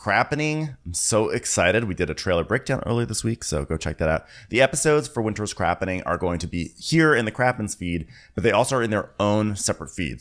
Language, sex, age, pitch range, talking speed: English, male, 30-49, 80-110 Hz, 235 wpm